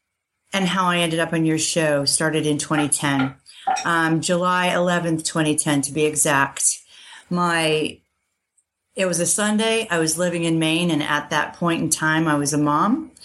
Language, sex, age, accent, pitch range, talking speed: English, female, 40-59, American, 150-175 Hz, 170 wpm